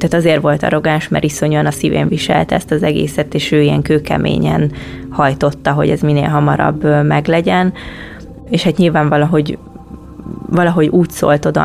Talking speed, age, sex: 155 wpm, 20-39, female